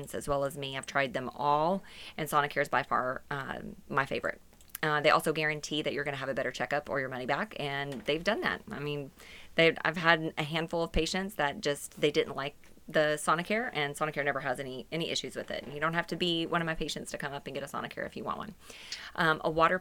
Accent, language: American, English